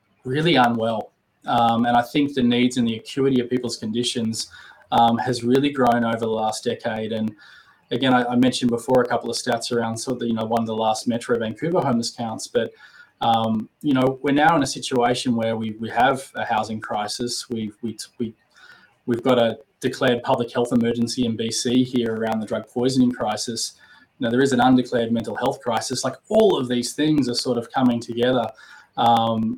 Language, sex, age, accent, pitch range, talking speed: English, male, 20-39, Australian, 115-130 Hz, 200 wpm